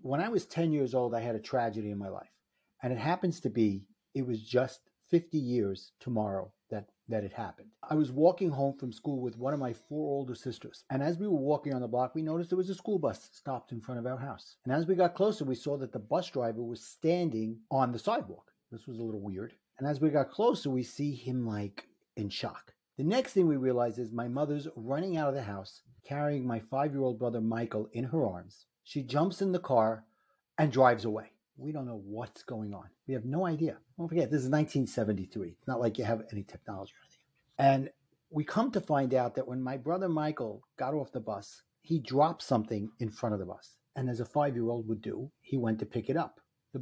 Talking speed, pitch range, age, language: 230 wpm, 115-155 Hz, 40-59, English